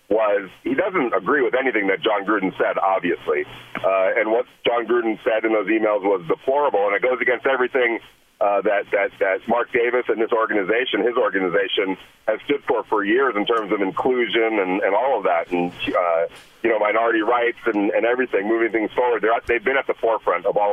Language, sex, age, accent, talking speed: English, male, 40-59, American, 210 wpm